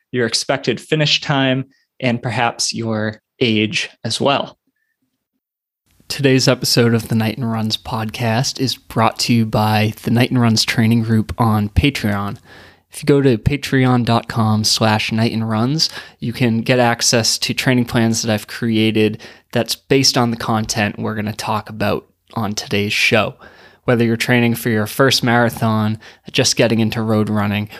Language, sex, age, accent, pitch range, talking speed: English, male, 20-39, American, 110-125 Hz, 160 wpm